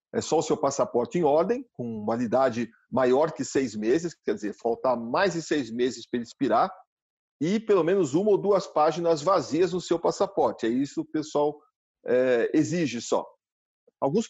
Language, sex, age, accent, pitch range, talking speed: Portuguese, male, 50-69, Brazilian, 130-195 Hz, 185 wpm